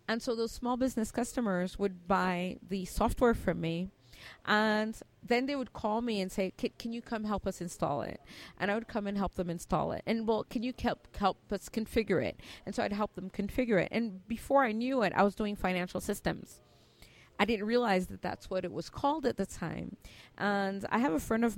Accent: American